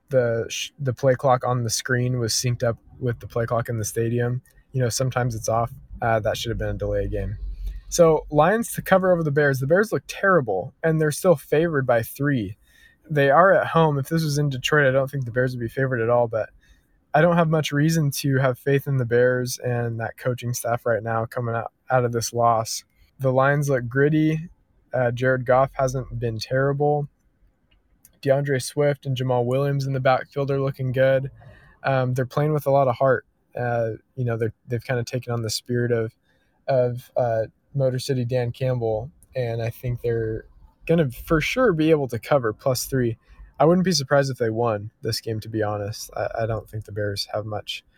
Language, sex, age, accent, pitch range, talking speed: English, male, 20-39, American, 115-140 Hz, 215 wpm